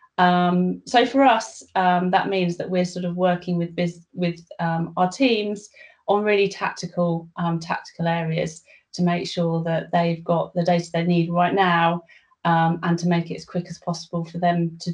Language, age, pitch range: English, 30-49, 175-200 Hz